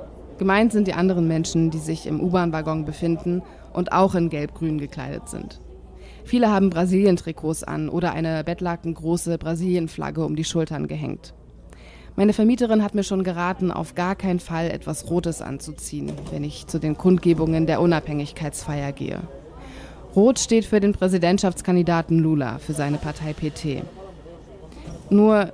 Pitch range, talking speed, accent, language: 155-190 Hz, 140 wpm, German, German